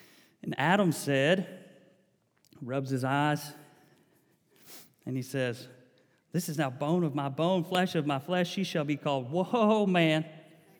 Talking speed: 145 wpm